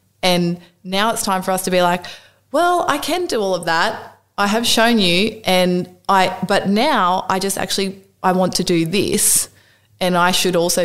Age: 20-39